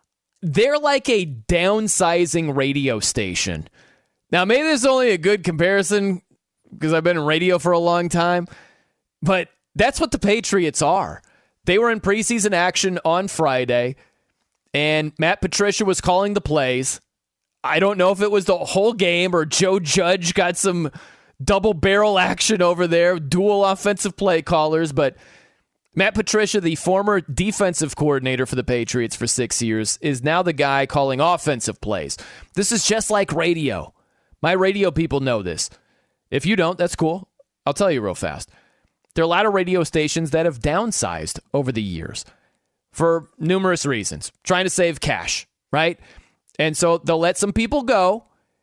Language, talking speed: English, 165 wpm